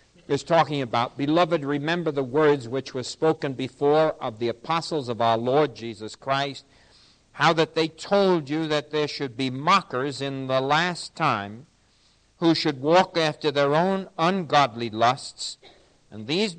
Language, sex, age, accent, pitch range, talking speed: English, male, 60-79, American, 130-165 Hz, 155 wpm